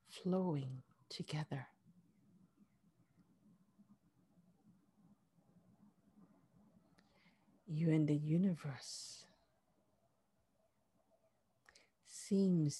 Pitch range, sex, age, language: 150-190 Hz, female, 50-69, English